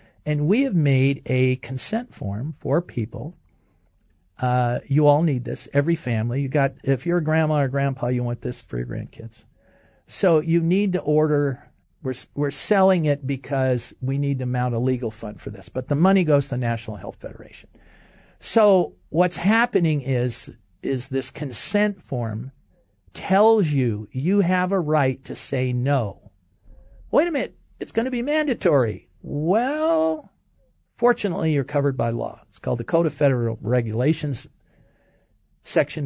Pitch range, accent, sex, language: 120-165 Hz, American, male, English